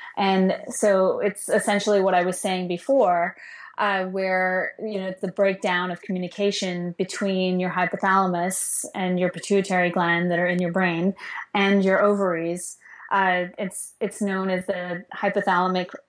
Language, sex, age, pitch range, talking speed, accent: English, female, 20-39, 180-200 Hz, 145 wpm, American